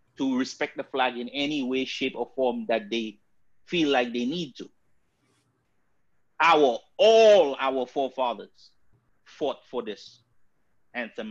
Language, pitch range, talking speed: English, 120-165 Hz, 135 wpm